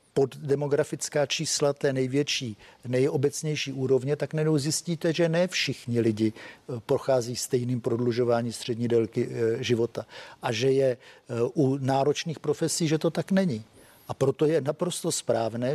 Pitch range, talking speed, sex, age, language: 125-155 Hz, 130 wpm, male, 50-69, Czech